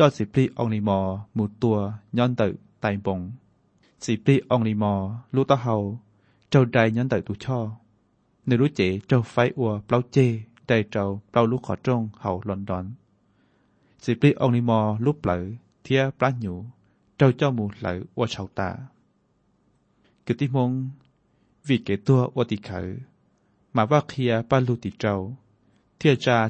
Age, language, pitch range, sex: 20-39, Thai, 105-130 Hz, male